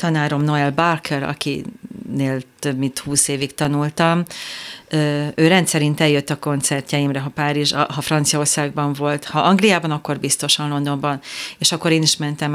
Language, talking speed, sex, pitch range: Hungarian, 140 wpm, female, 145-180 Hz